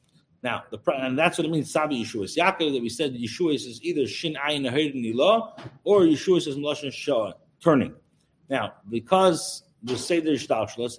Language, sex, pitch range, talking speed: English, male, 140-175 Hz, 155 wpm